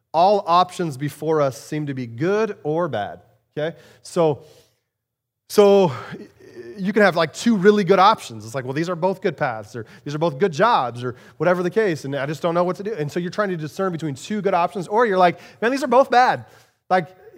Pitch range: 150-200 Hz